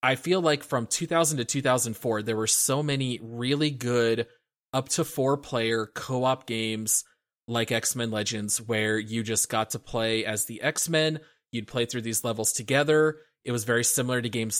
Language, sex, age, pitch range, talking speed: English, male, 20-39, 110-135 Hz, 165 wpm